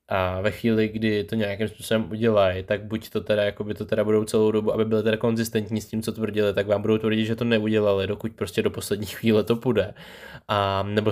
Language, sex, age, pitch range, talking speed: Czech, male, 20-39, 105-120 Hz, 225 wpm